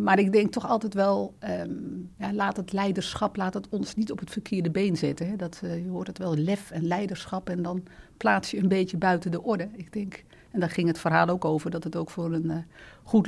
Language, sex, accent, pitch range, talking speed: Dutch, female, Dutch, 170-200 Hz, 250 wpm